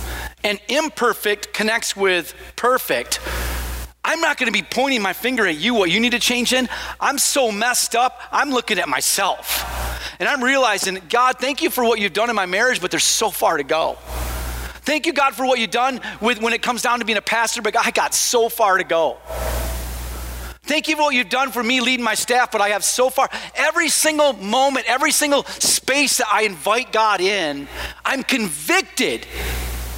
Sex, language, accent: male, English, American